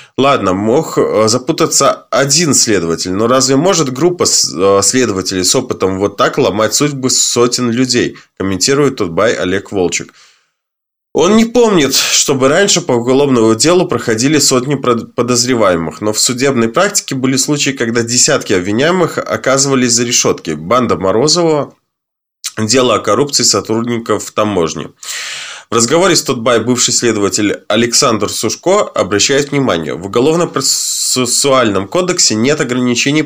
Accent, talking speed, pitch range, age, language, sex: native, 125 wpm, 110-140 Hz, 20-39, Russian, male